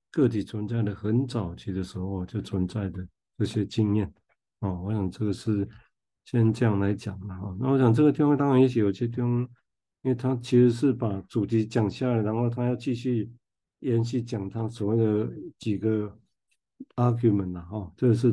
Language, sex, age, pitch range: Chinese, male, 50-69, 100-120 Hz